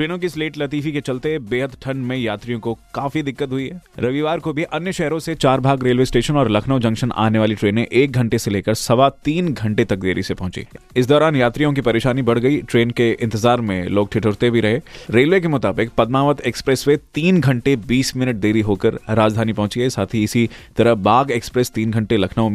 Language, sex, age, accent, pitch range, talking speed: Hindi, male, 20-39, native, 110-135 Hz, 210 wpm